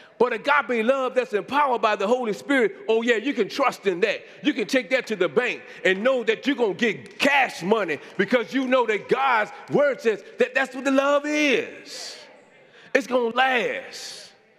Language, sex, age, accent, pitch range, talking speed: English, male, 40-59, American, 225-285 Hz, 205 wpm